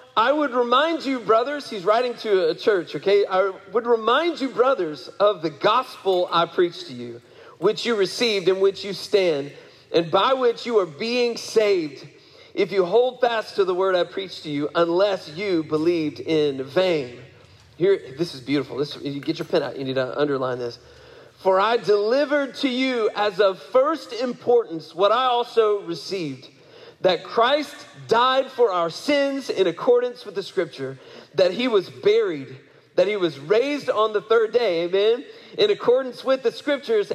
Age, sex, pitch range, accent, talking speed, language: 40-59, male, 165-265 Hz, American, 180 wpm, English